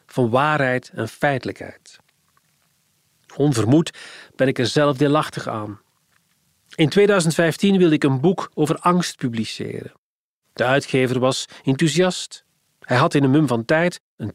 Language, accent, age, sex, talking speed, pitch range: Dutch, Dutch, 40-59, male, 135 wpm, 125-170 Hz